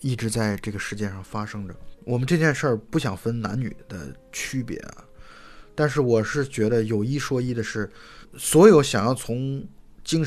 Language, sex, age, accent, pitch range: Chinese, male, 20-39, native, 105-140 Hz